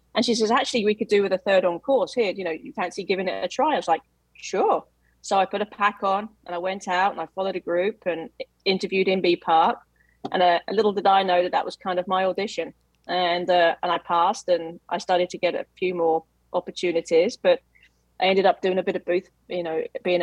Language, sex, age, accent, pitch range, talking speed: English, female, 30-49, British, 170-210 Hz, 250 wpm